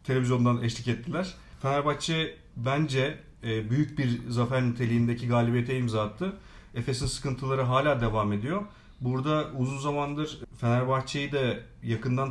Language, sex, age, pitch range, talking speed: Turkish, male, 40-59, 120-145 Hz, 110 wpm